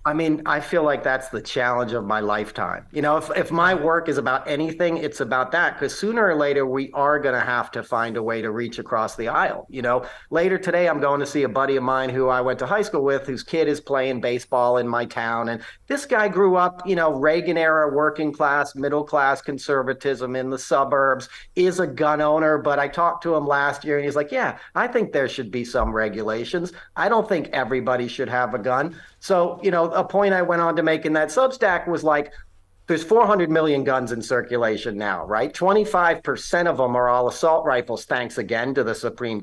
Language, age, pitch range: English, 40-59, 130-175 Hz